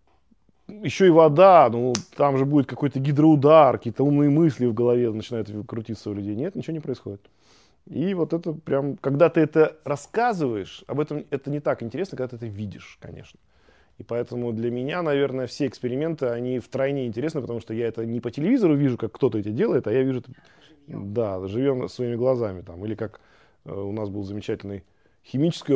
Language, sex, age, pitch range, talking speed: Russian, male, 20-39, 105-140 Hz, 180 wpm